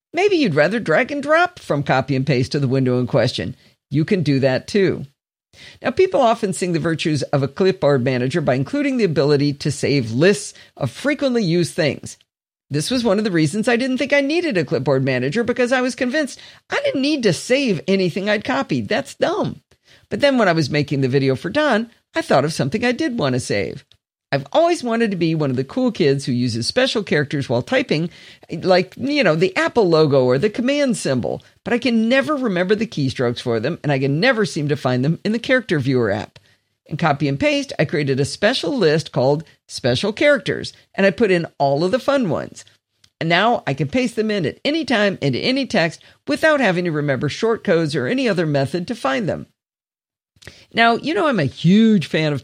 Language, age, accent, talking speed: English, 50-69, American, 220 wpm